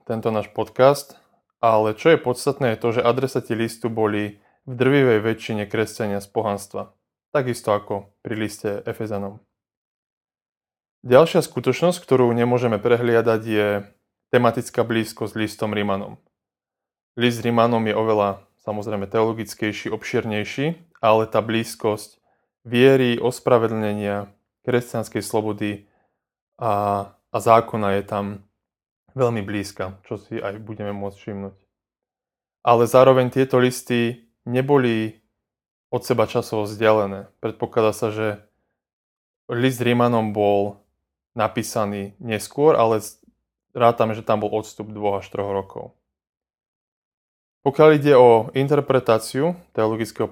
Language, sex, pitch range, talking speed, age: Slovak, male, 105-120 Hz, 115 wpm, 20-39